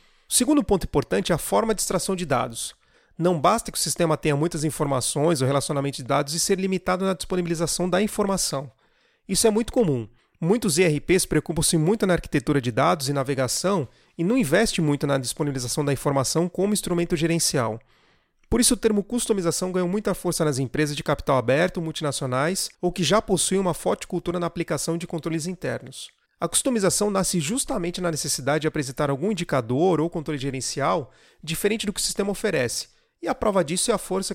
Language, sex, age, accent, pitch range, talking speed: Portuguese, male, 40-59, Brazilian, 145-190 Hz, 185 wpm